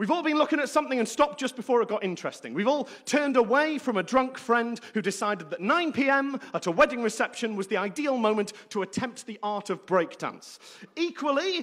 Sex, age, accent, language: male, 40-59, British, English